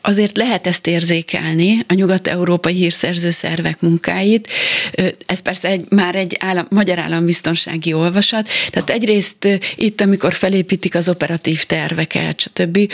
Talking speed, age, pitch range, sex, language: 120 wpm, 30-49, 170-210 Hz, female, Hungarian